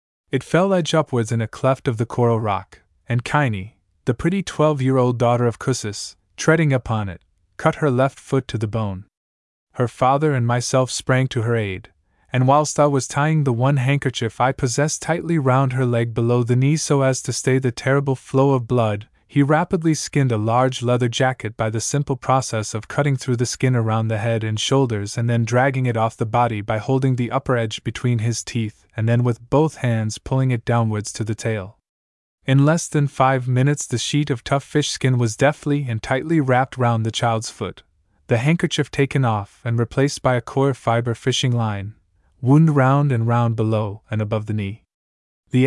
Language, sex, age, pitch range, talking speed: English, male, 20-39, 110-135 Hz, 200 wpm